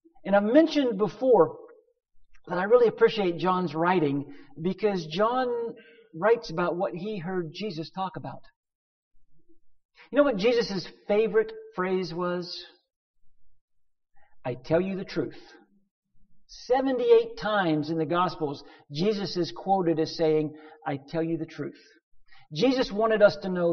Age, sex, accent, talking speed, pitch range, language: 50-69, male, American, 130 wpm, 160-250 Hz, English